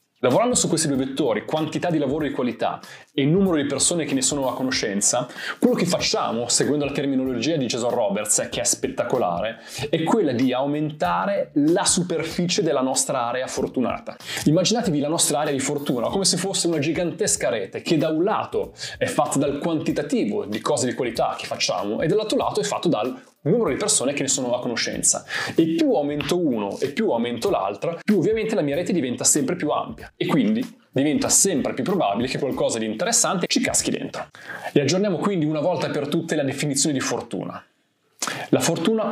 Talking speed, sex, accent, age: 190 wpm, male, native, 20-39